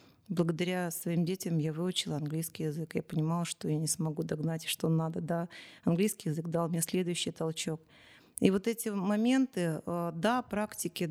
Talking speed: 160 wpm